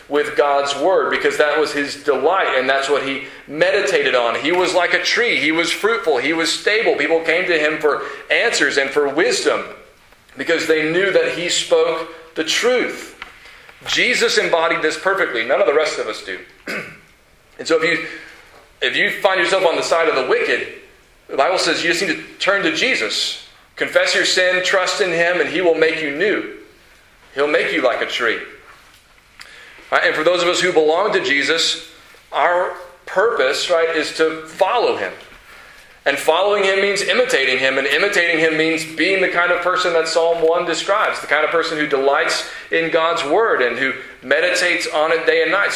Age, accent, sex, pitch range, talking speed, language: 40-59, American, male, 155-195 Hz, 190 wpm, English